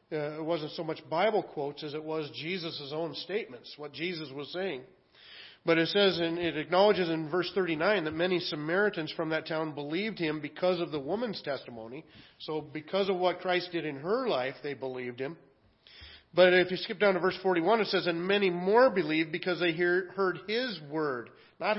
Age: 40-59